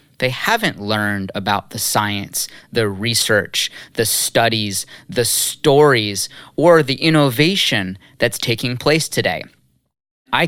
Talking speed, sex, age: 115 wpm, male, 20-39